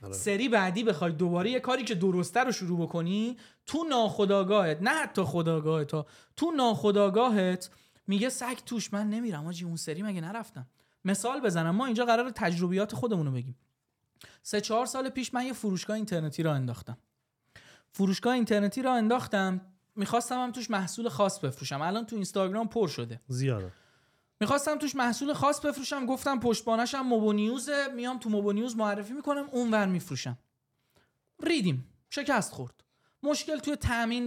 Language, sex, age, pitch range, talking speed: Persian, male, 20-39, 180-245 Hz, 145 wpm